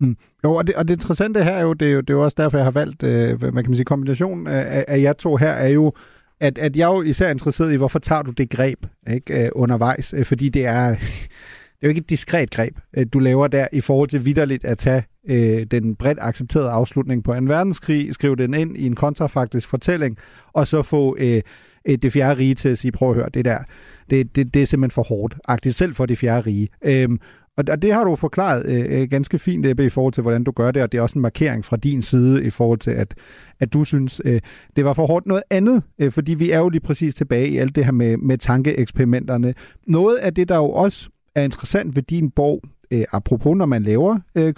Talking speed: 240 wpm